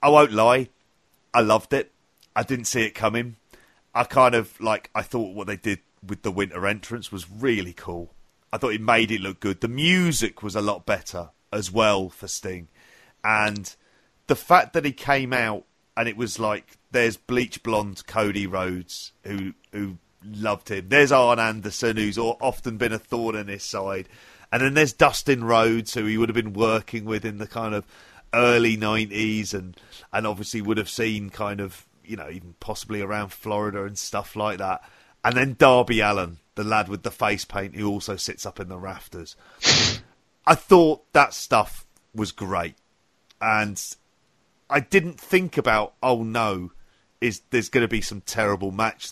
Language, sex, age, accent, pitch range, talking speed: English, male, 40-59, British, 100-120 Hz, 180 wpm